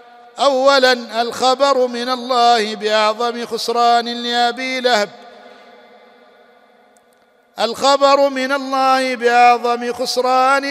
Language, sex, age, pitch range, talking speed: Arabic, male, 50-69, 235-255 Hz, 75 wpm